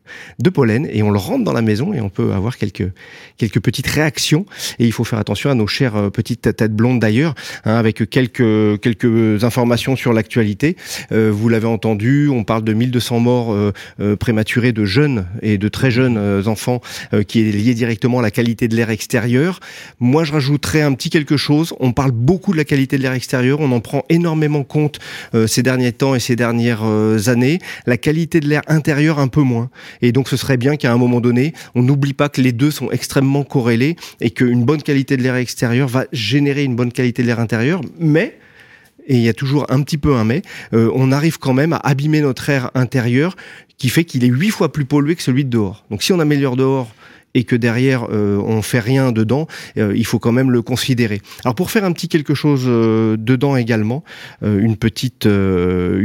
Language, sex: French, male